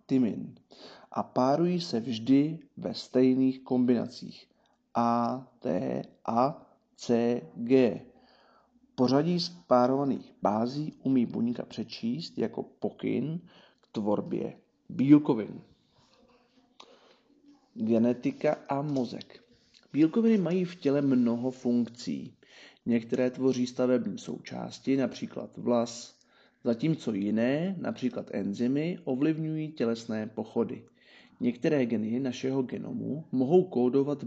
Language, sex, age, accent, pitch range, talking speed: Czech, male, 40-59, native, 120-175 Hz, 90 wpm